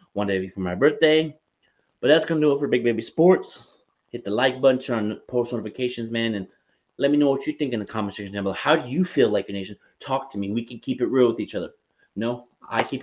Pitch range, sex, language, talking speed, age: 110-145 Hz, male, English, 265 wpm, 30-49